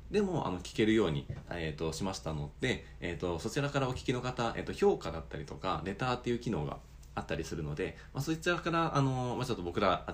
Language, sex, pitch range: Japanese, male, 80-115 Hz